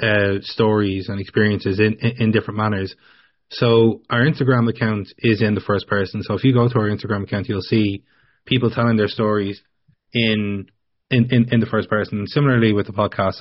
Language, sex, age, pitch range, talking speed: English, male, 20-39, 100-115 Hz, 190 wpm